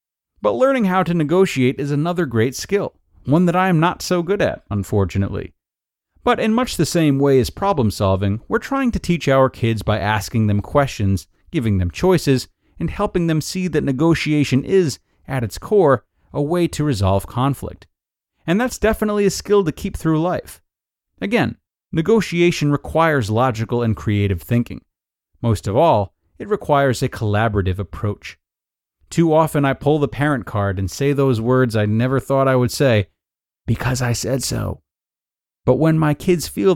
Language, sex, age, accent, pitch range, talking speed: English, male, 30-49, American, 105-165 Hz, 170 wpm